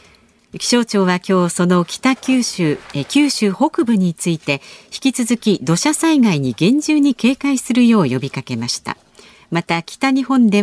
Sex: female